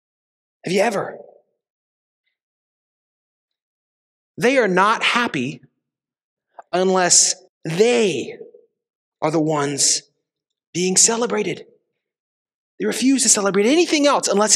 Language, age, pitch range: English, 30-49, 210-295 Hz